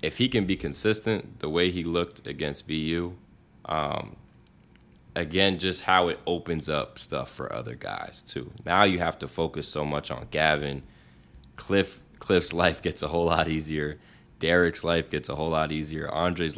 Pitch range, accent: 75-95 Hz, American